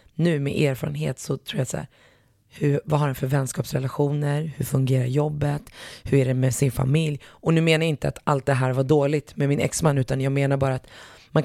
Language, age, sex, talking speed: Swedish, 20-39, female, 220 wpm